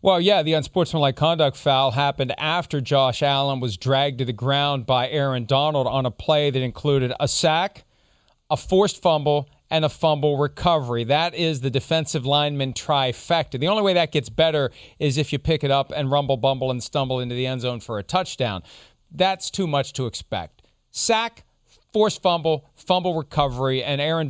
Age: 40-59